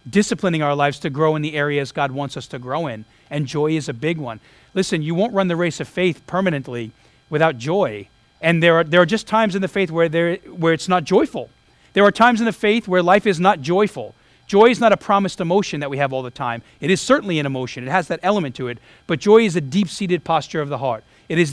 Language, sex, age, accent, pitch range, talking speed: English, male, 40-59, American, 145-190 Hz, 255 wpm